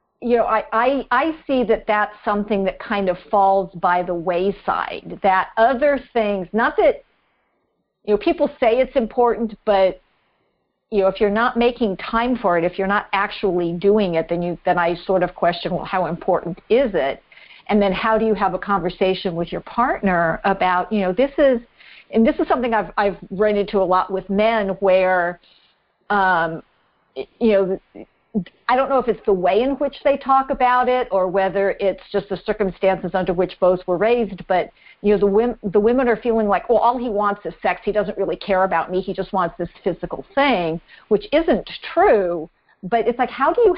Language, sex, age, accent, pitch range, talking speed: English, female, 50-69, American, 185-235 Hz, 205 wpm